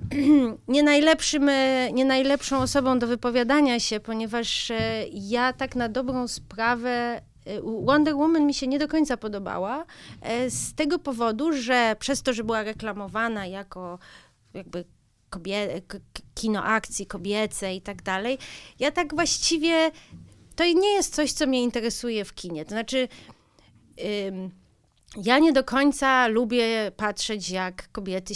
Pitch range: 190-265 Hz